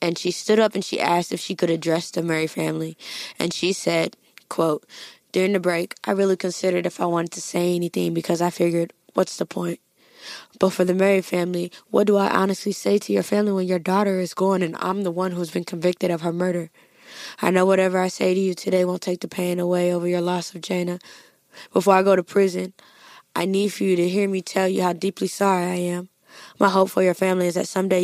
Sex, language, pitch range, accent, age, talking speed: female, English, 175-200 Hz, American, 20-39, 235 wpm